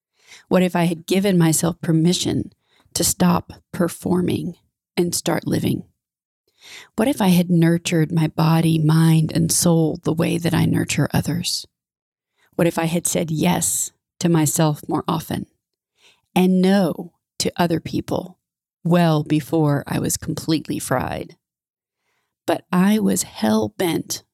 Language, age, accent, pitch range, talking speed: English, 30-49, American, 160-180 Hz, 135 wpm